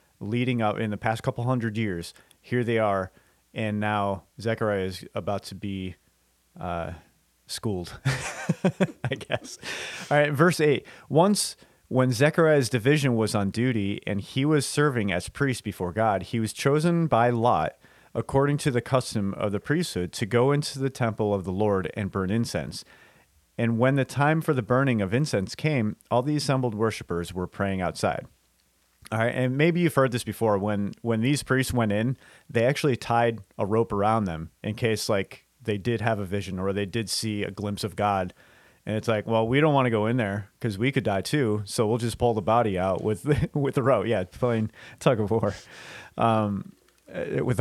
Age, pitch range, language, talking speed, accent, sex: 30-49, 105-140 Hz, English, 190 wpm, American, male